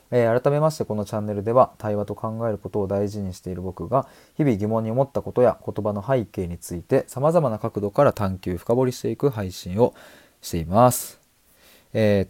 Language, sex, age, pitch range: Japanese, male, 20-39, 95-125 Hz